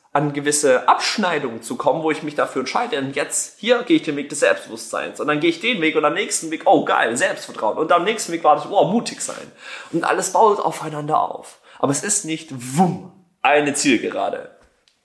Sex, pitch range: male, 120-190 Hz